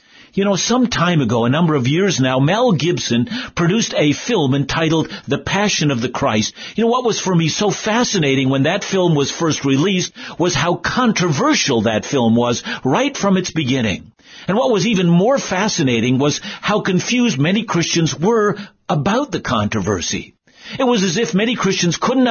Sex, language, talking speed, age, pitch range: male, English, 180 wpm, 50-69, 145-210 Hz